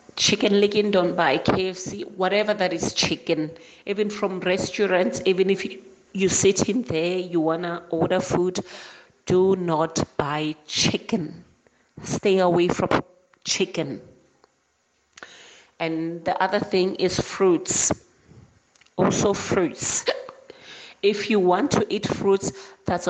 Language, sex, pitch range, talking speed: English, female, 165-195 Hz, 120 wpm